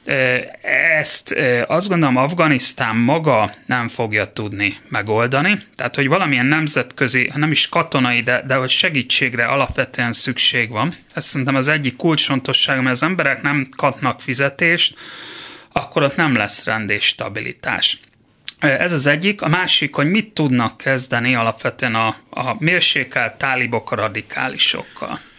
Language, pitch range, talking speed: Hungarian, 120-155 Hz, 130 wpm